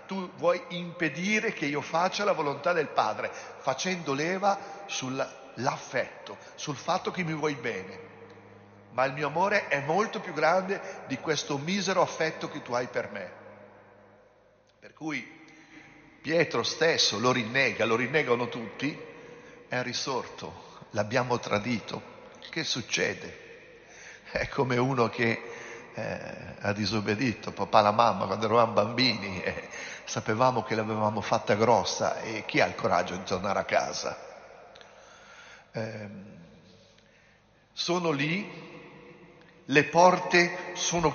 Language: Italian